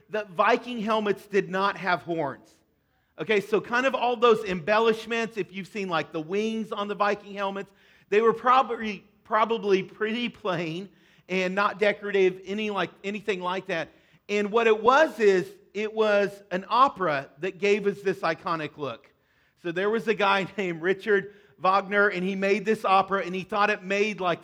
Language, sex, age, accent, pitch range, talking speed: English, male, 40-59, American, 180-215 Hz, 170 wpm